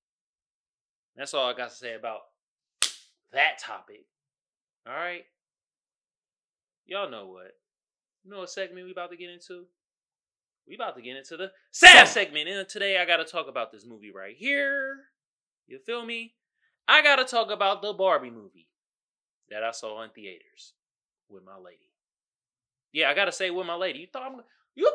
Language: English